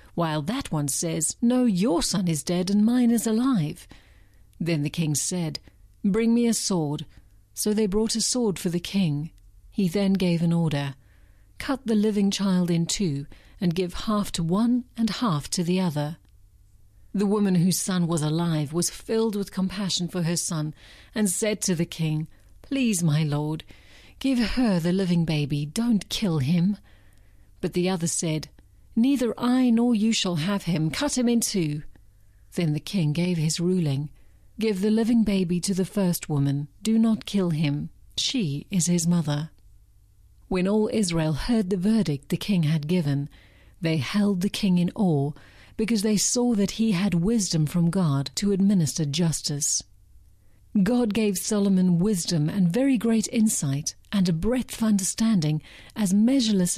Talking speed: 170 wpm